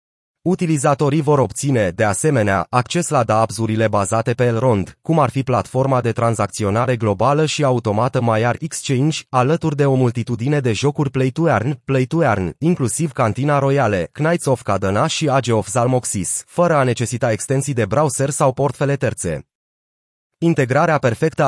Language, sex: Romanian, male